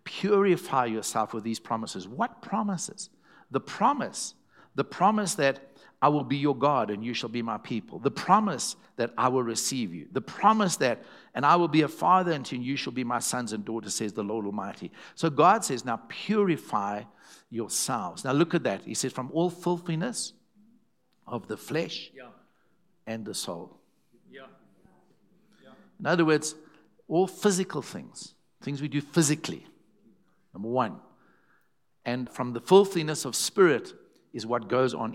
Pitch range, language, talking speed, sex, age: 115-175 Hz, English, 160 wpm, male, 60-79